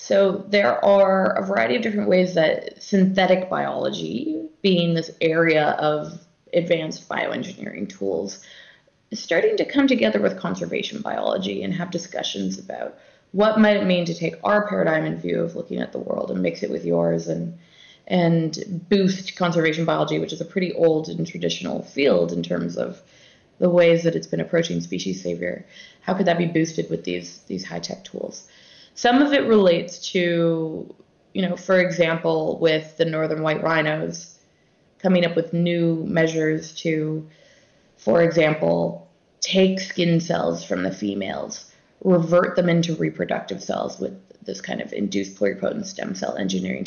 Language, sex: English, female